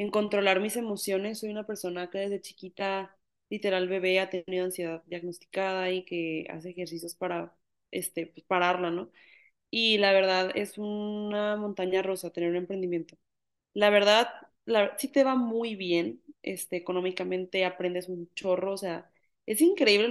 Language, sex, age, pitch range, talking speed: Spanish, female, 20-39, 185-220 Hz, 155 wpm